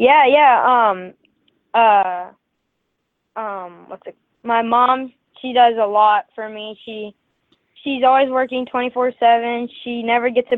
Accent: American